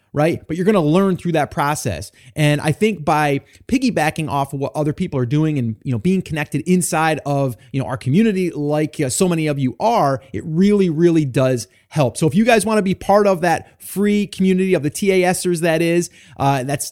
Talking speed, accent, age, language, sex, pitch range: 215 wpm, American, 30-49, English, male, 130-180 Hz